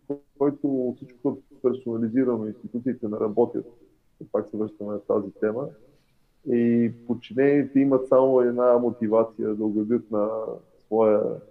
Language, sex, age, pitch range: Bulgarian, male, 20-39, 110-130 Hz